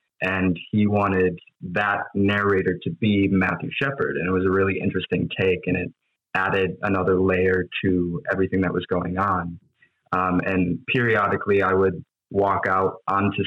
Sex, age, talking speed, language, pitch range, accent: male, 20-39, 155 wpm, English, 95-105 Hz, American